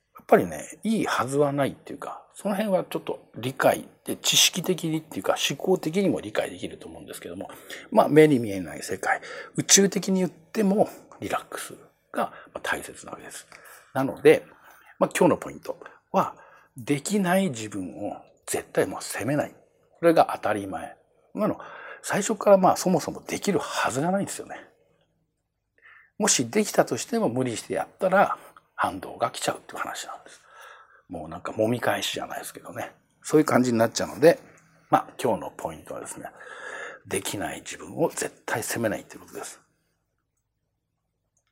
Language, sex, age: Japanese, male, 60-79